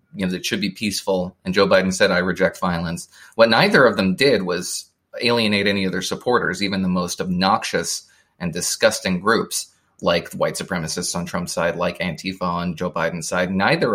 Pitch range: 90-110 Hz